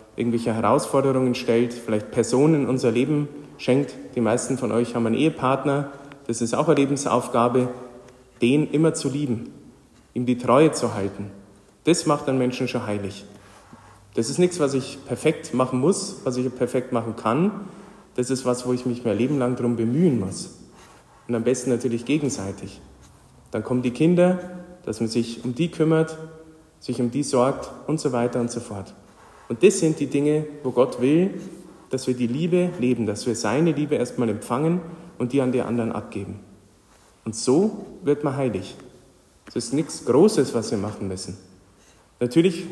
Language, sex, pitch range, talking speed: German, male, 115-150 Hz, 175 wpm